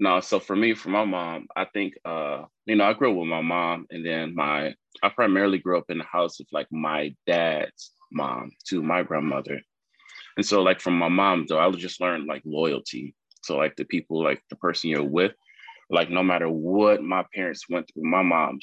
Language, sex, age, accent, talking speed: English, male, 20-39, American, 220 wpm